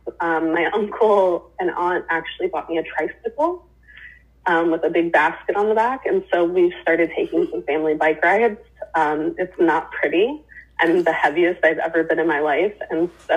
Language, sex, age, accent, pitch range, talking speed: English, female, 30-49, American, 155-215 Hz, 190 wpm